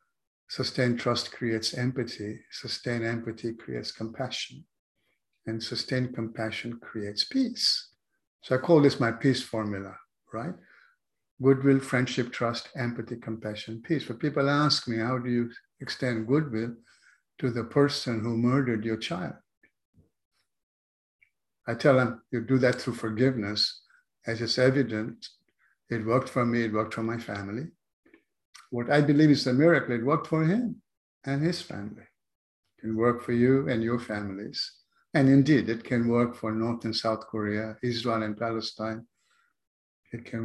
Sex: male